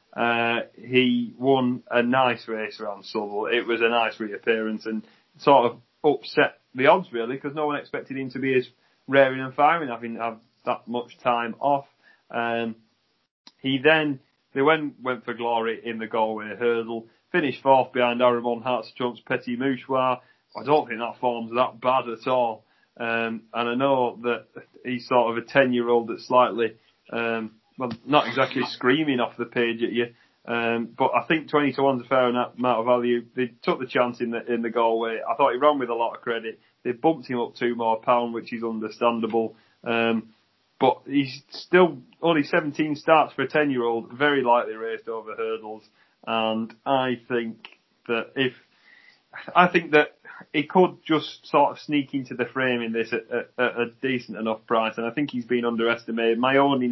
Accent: British